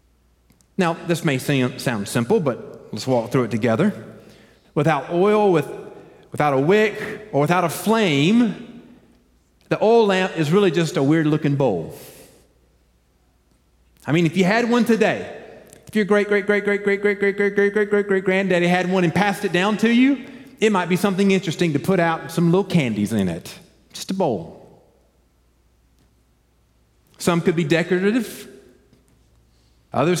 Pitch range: 125-200 Hz